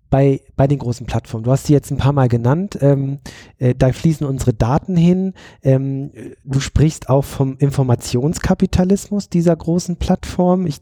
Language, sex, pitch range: German, male, 120-145 Hz